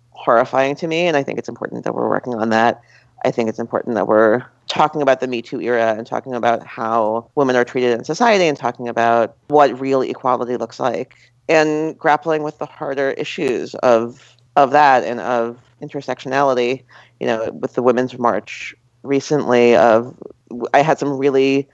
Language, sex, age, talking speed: English, female, 40-59, 185 wpm